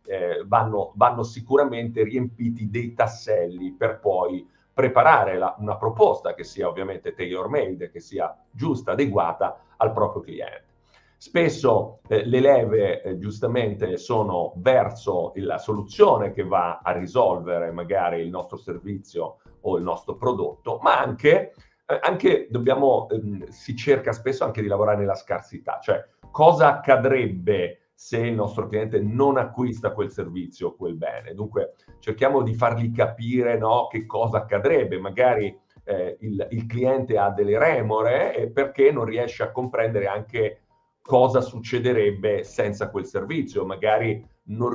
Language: Italian